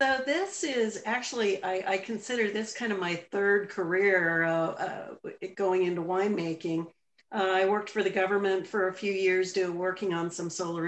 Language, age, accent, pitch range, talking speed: English, 50-69, American, 185-215 Hz, 180 wpm